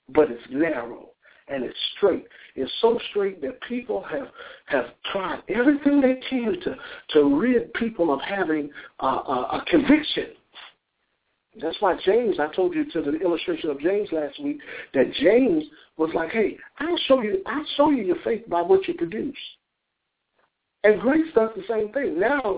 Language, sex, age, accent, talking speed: English, male, 60-79, American, 165 wpm